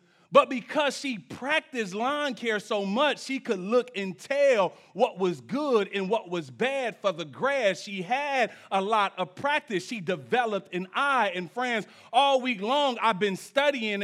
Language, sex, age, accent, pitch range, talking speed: English, male, 30-49, American, 210-275 Hz, 175 wpm